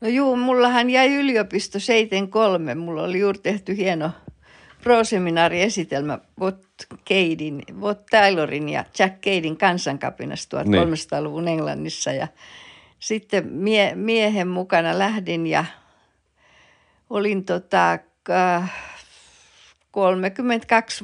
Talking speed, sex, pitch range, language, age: 95 wpm, female, 160-195 Hz, Finnish, 60-79